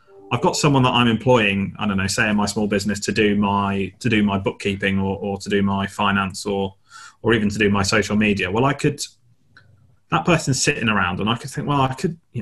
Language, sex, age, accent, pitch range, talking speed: English, male, 30-49, British, 100-120 Hz, 240 wpm